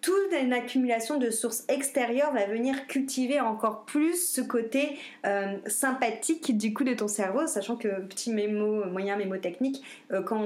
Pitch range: 210-260 Hz